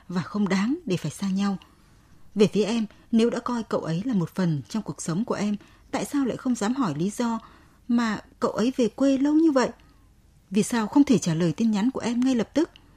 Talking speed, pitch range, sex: 240 wpm, 170-235 Hz, female